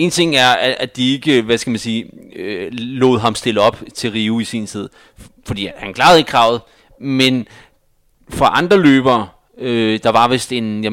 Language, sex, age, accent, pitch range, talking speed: Danish, male, 30-49, native, 115-150 Hz, 190 wpm